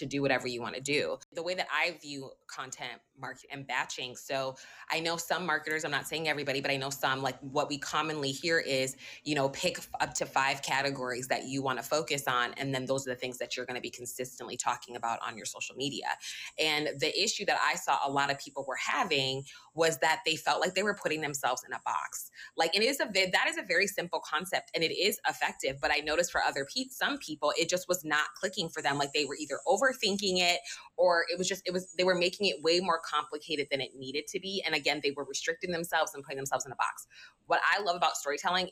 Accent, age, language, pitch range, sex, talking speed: American, 20-39, English, 135-175 Hz, female, 250 wpm